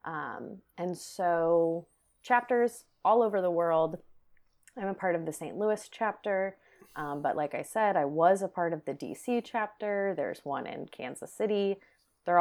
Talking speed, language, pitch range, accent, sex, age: 170 wpm, English, 160-200 Hz, American, female, 30-49